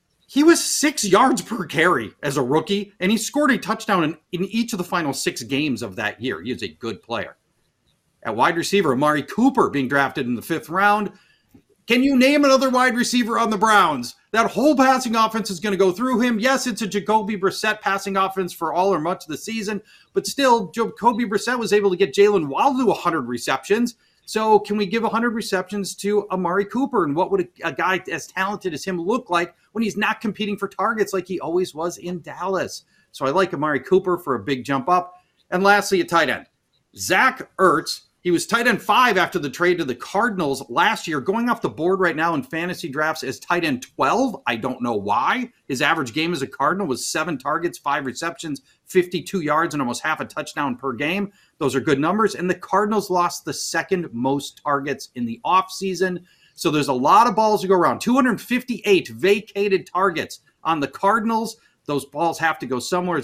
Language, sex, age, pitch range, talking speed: English, male, 40-59, 165-225 Hz, 210 wpm